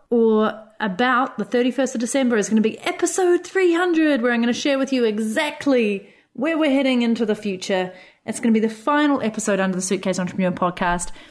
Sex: female